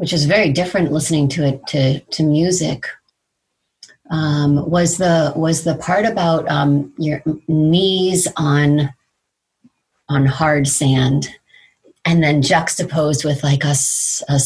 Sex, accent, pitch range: female, American, 140-160 Hz